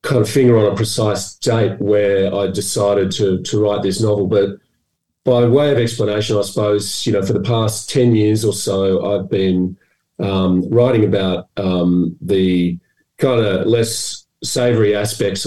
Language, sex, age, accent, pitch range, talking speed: English, male, 40-59, Australian, 95-105 Hz, 165 wpm